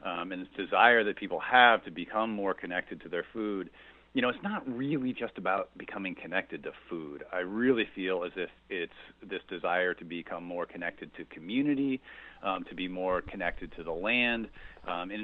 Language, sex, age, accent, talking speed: English, male, 40-59, American, 195 wpm